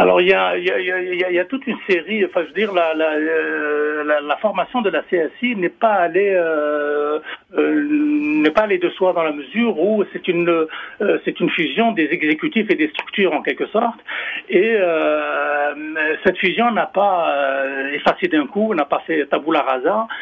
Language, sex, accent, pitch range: French, male, French, 150-220 Hz